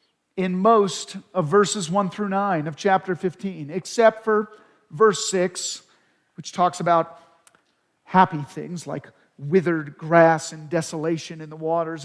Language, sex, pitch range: English, male, 160-190 Hz